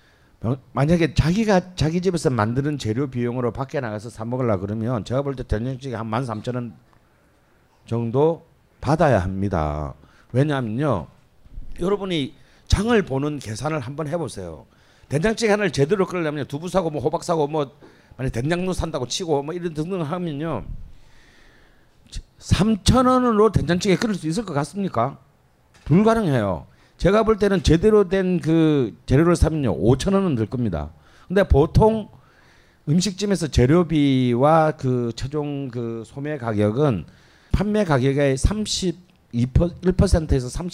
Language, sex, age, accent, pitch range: Korean, male, 40-59, native, 120-175 Hz